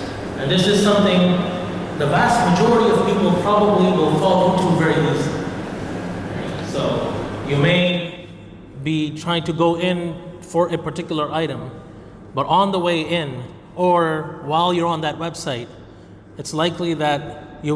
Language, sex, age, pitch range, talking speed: English, male, 30-49, 145-175 Hz, 140 wpm